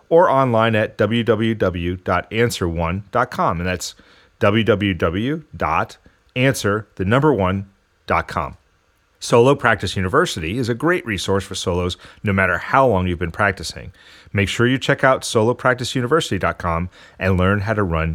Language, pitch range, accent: English, 95-120 Hz, American